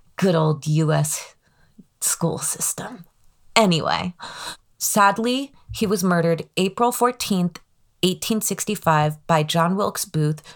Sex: female